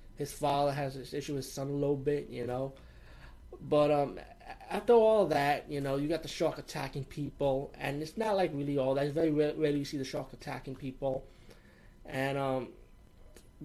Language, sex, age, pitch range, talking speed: English, male, 20-39, 130-155 Hz, 200 wpm